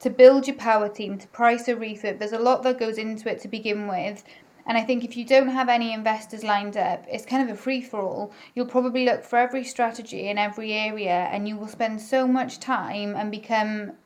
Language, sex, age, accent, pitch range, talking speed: English, female, 30-49, British, 205-235 Hz, 235 wpm